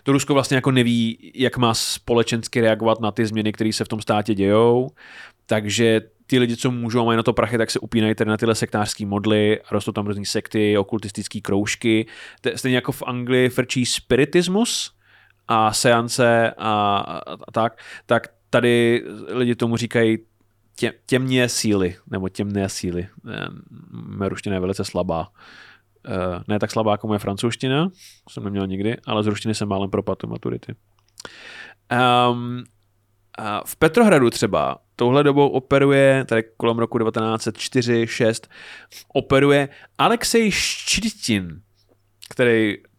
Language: Czech